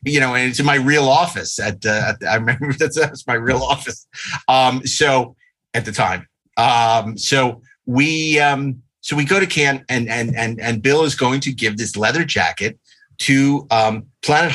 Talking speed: 200 wpm